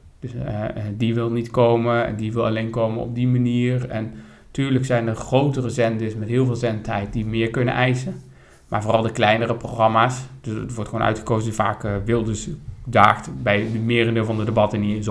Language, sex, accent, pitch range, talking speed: Dutch, male, Dutch, 110-135 Hz, 190 wpm